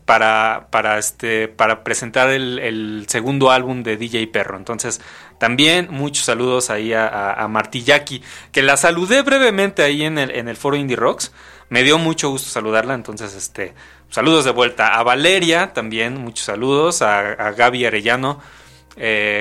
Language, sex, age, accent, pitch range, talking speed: Spanish, male, 20-39, Mexican, 110-140 Hz, 165 wpm